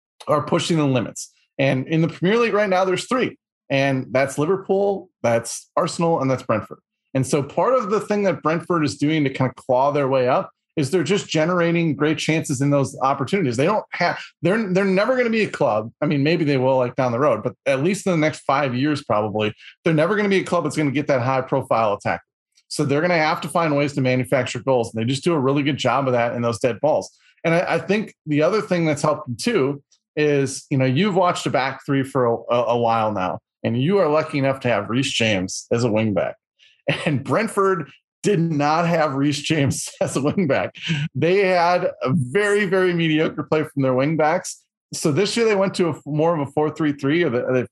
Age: 30-49